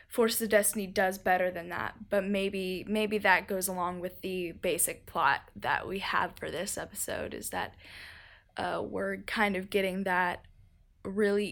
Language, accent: English, American